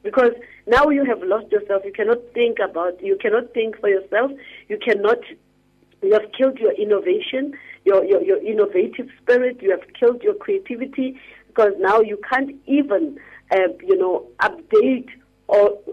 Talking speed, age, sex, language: 160 wpm, 40-59, female, English